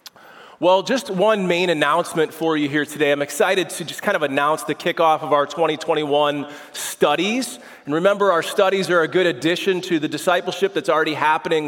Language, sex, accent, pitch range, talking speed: English, male, American, 145-180 Hz, 185 wpm